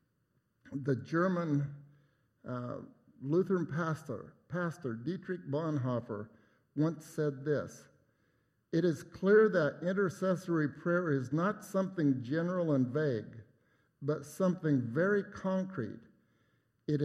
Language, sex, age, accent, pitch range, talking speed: English, male, 60-79, American, 130-165 Hz, 100 wpm